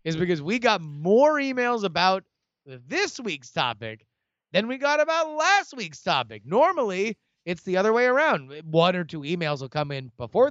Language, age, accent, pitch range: English, 30-49, American, 145-195 Hz